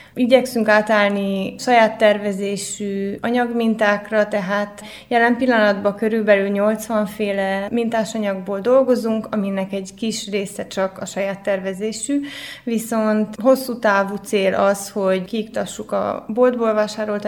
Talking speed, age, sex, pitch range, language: 110 wpm, 20-39, female, 200-225 Hz, Hungarian